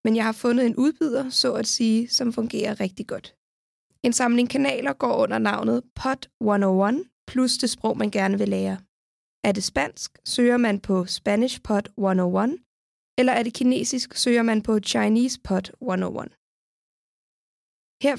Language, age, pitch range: Danish, 20-39, 210-260 Hz